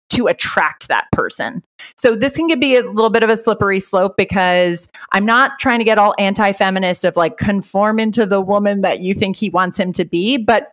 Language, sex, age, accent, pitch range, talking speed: English, female, 30-49, American, 190-255 Hz, 215 wpm